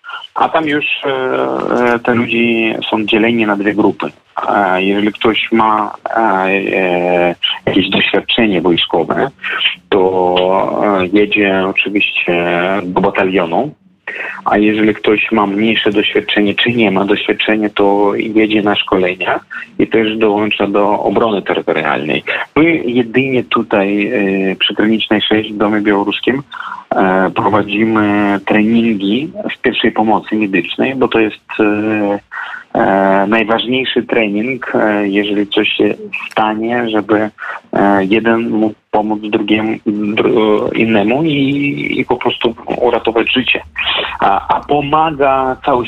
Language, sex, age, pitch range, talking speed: Polish, male, 30-49, 100-115 Hz, 120 wpm